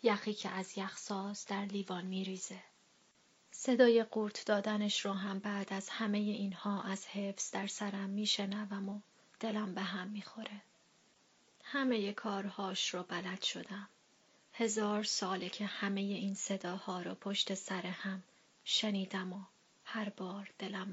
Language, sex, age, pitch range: Persian, female, 30-49, 195-215 Hz